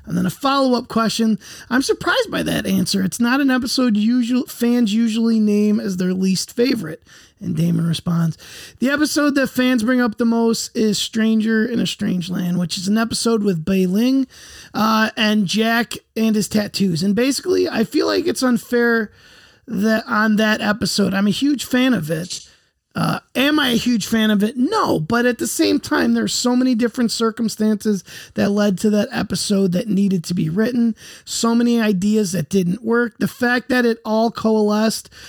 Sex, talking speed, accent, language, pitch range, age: male, 185 wpm, American, English, 200-245 Hz, 30-49